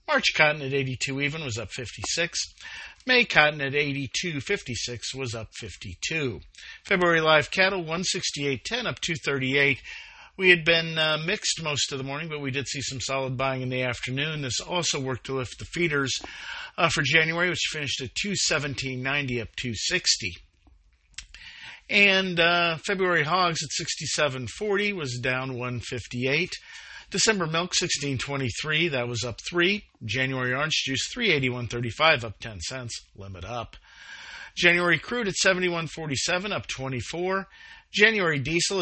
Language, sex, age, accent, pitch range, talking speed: English, male, 50-69, American, 125-170 Hz, 140 wpm